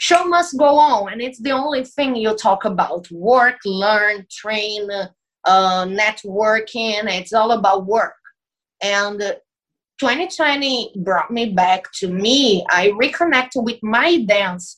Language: English